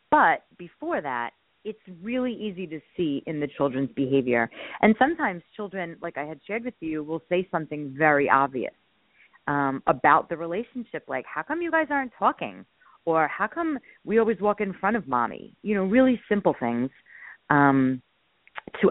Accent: American